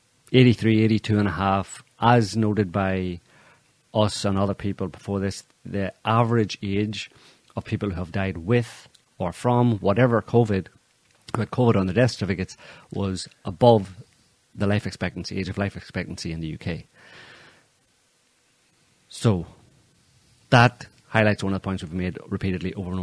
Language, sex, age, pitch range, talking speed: English, male, 40-59, 90-105 Hz, 145 wpm